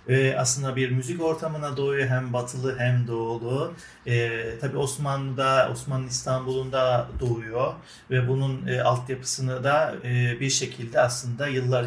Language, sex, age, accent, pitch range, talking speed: Turkish, male, 40-59, native, 125-145 Hz, 130 wpm